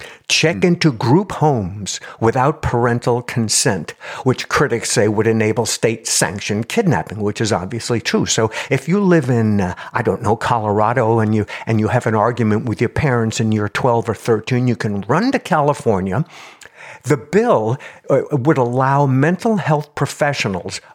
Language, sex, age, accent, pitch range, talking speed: English, male, 60-79, American, 110-145 Hz, 160 wpm